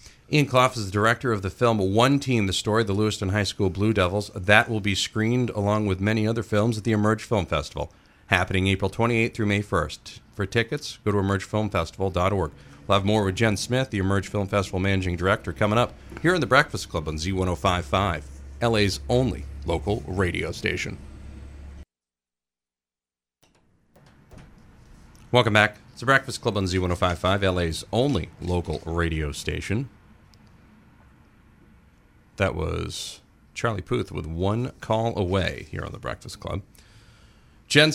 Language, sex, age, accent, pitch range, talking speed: English, male, 40-59, American, 90-110 Hz, 155 wpm